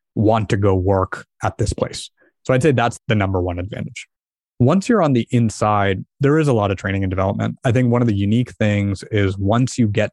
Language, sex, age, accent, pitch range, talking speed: English, male, 20-39, American, 100-120 Hz, 230 wpm